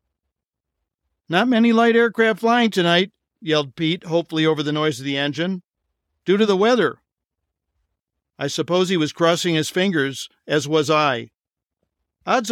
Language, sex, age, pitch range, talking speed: English, male, 50-69, 130-180 Hz, 145 wpm